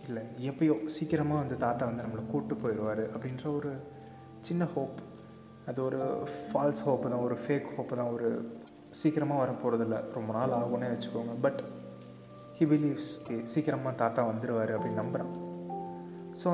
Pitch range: 110-150 Hz